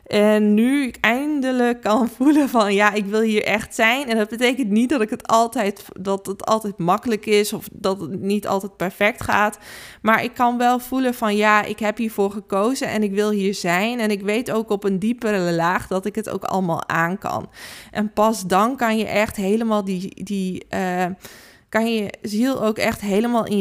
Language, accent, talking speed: Dutch, Dutch, 195 wpm